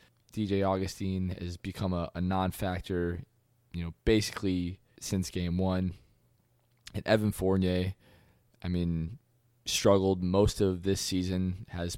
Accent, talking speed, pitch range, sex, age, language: American, 125 wpm, 90-105 Hz, male, 20-39, English